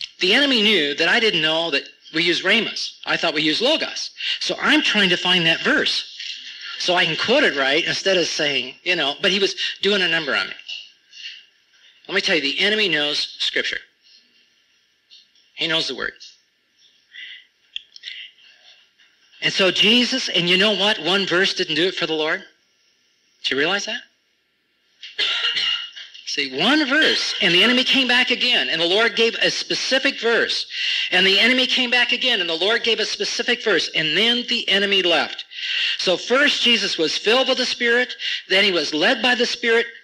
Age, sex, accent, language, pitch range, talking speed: 50-69, male, American, English, 180-255 Hz, 185 wpm